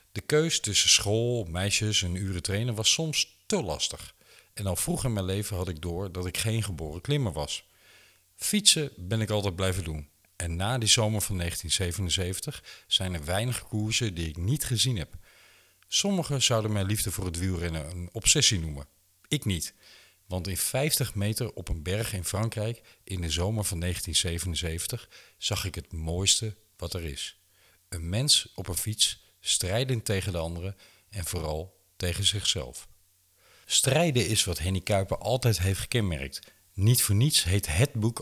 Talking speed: 170 wpm